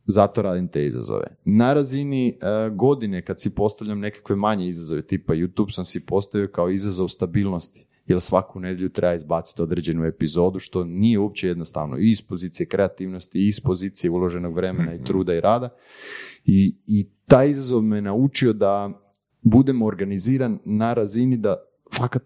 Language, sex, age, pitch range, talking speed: Croatian, male, 30-49, 95-125 Hz, 160 wpm